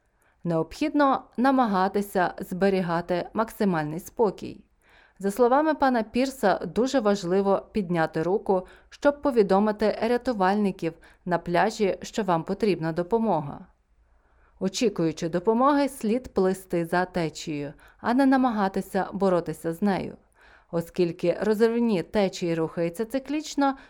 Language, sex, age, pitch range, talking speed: Ukrainian, female, 30-49, 175-230 Hz, 100 wpm